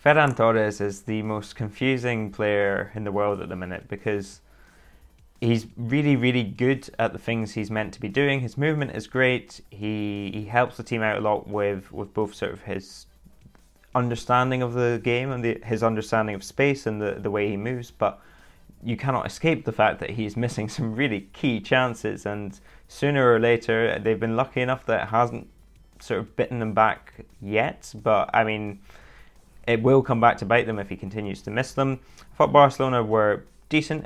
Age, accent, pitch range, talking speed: 20-39, British, 105-125 Hz, 195 wpm